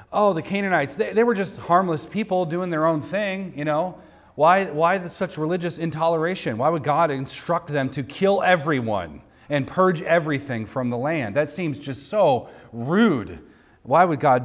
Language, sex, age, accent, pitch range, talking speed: English, male, 40-59, American, 105-150 Hz, 175 wpm